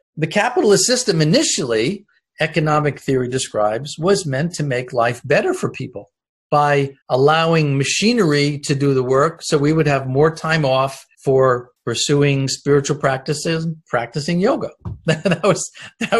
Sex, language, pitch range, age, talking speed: male, English, 130-160 Hz, 50-69, 140 wpm